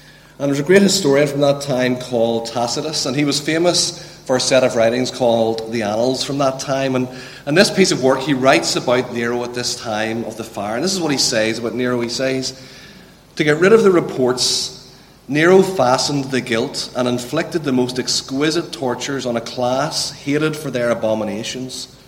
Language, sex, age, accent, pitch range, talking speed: English, male, 40-59, Irish, 120-155 Hz, 200 wpm